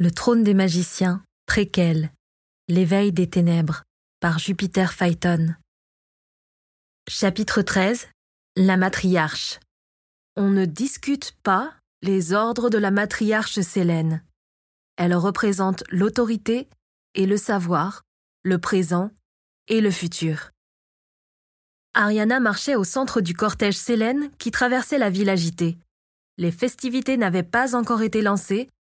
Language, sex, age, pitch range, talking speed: French, female, 20-39, 185-240 Hz, 115 wpm